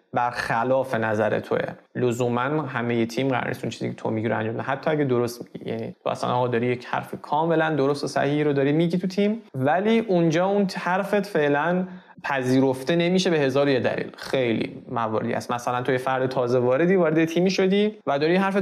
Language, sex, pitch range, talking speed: Persian, male, 125-175 Hz, 195 wpm